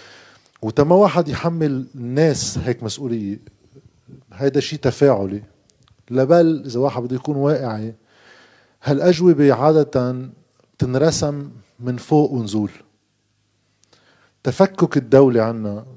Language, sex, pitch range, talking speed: Arabic, male, 110-135 Hz, 90 wpm